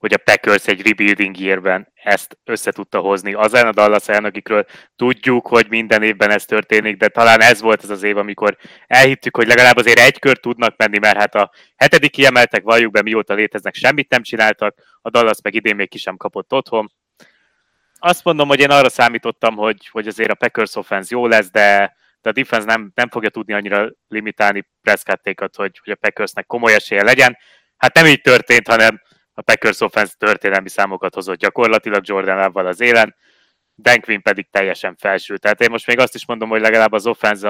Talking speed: 195 wpm